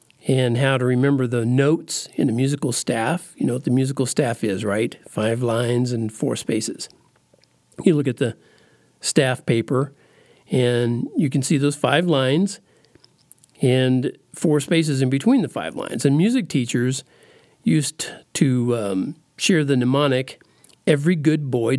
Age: 50-69